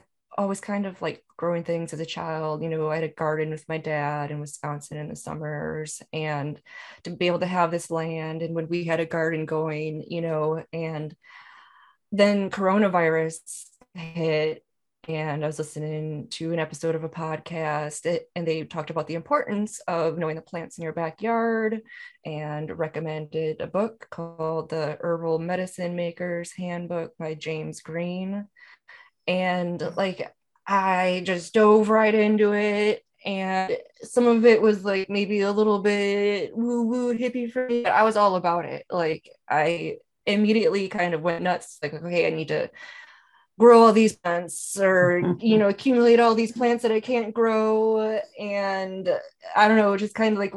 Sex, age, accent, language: female, 20-39, American, English